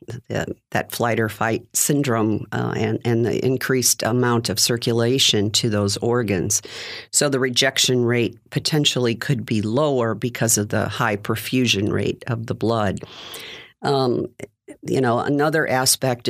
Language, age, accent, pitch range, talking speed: English, 50-69, American, 115-135 Hz, 140 wpm